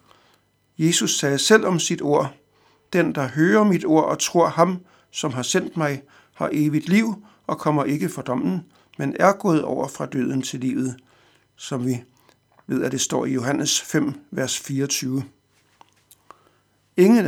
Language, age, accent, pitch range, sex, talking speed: Danish, 60-79, native, 135-175 Hz, male, 160 wpm